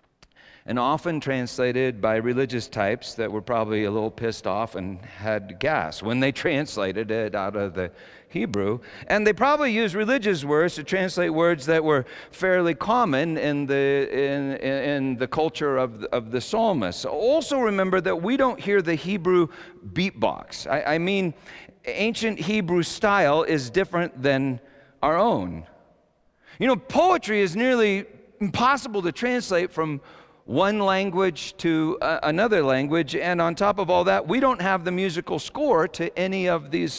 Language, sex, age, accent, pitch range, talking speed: English, male, 50-69, American, 120-190 Hz, 160 wpm